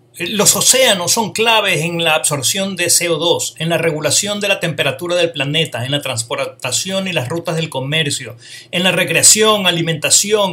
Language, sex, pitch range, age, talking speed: Spanish, male, 125-205 Hz, 40-59, 165 wpm